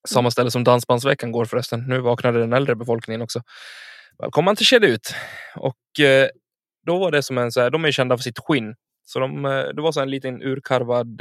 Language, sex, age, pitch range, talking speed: Swedish, male, 20-39, 120-170 Hz, 215 wpm